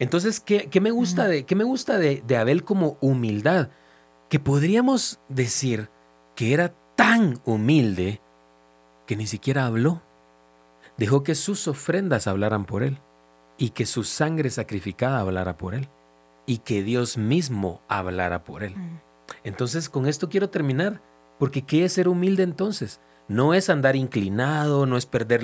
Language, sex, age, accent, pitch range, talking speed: Spanish, male, 40-59, Mexican, 100-160 Hz, 145 wpm